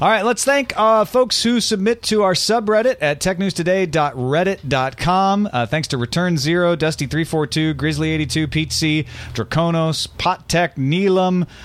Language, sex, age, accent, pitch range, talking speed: English, male, 40-59, American, 110-175 Hz, 125 wpm